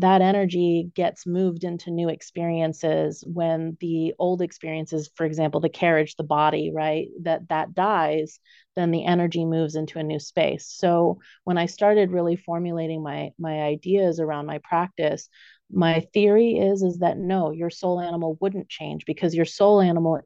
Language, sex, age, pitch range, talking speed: English, female, 30-49, 160-185 Hz, 165 wpm